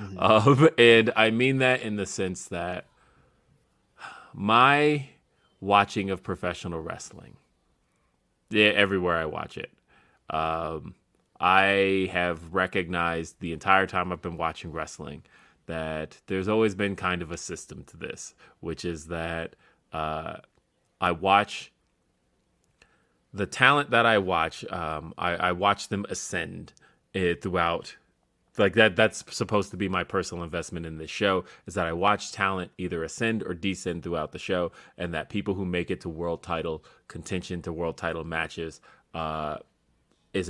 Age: 30-49